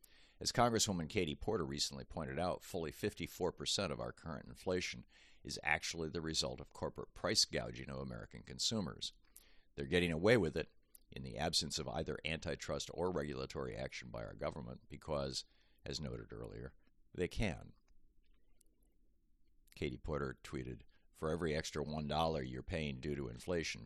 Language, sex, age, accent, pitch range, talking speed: English, male, 50-69, American, 65-80 Hz, 150 wpm